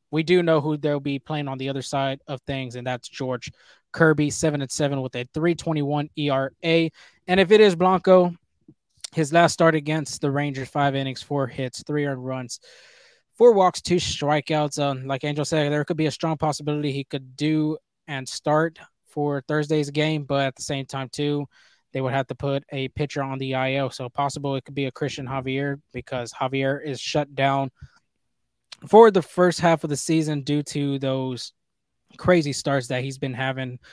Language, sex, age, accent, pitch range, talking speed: English, male, 20-39, American, 135-160 Hz, 195 wpm